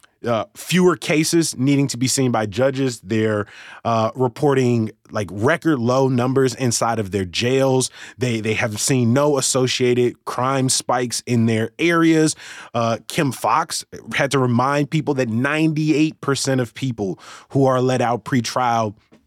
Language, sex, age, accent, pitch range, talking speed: English, male, 20-39, American, 110-140 Hz, 155 wpm